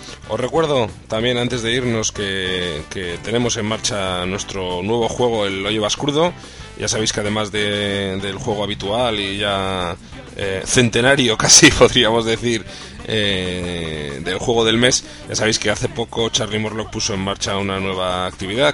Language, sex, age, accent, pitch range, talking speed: Spanish, male, 20-39, Spanish, 95-115 Hz, 160 wpm